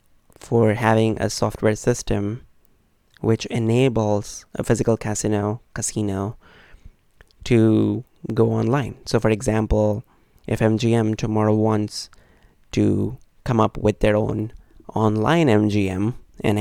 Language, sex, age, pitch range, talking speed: English, male, 20-39, 105-115 Hz, 110 wpm